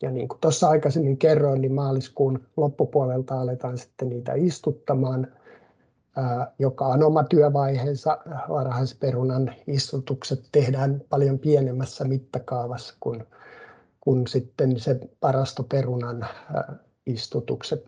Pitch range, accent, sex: 125-145 Hz, native, male